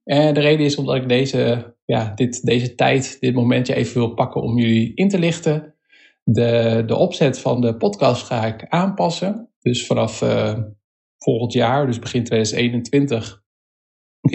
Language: Dutch